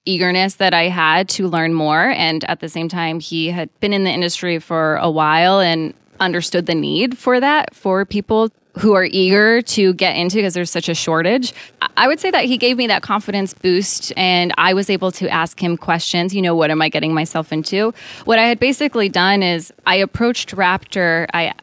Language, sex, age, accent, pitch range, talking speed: English, female, 20-39, American, 170-200 Hz, 210 wpm